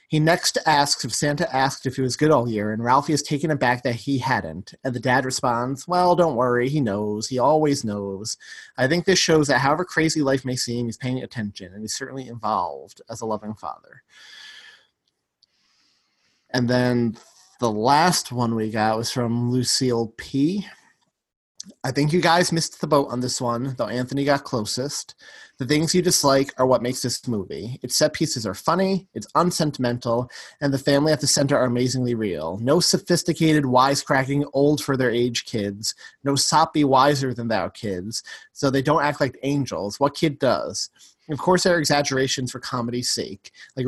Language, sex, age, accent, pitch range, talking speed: English, male, 30-49, American, 120-145 Hz, 180 wpm